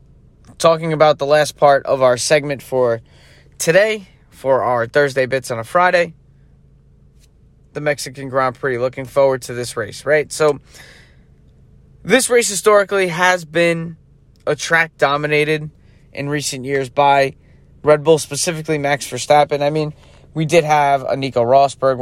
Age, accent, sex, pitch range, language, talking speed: 20-39, American, male, 130-160 Hz, English, 145 wpm